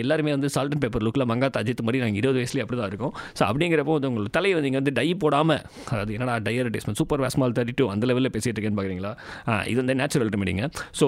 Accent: Indian